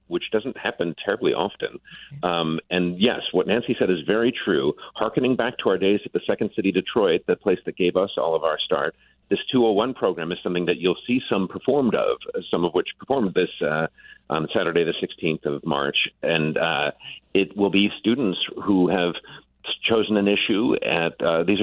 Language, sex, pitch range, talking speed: English, male, 90-120 Hz, 195 wpm